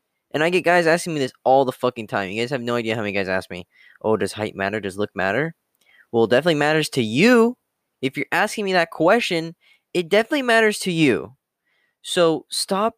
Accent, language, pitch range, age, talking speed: American, English, 130-195 Hz, 10-29, 215 wpm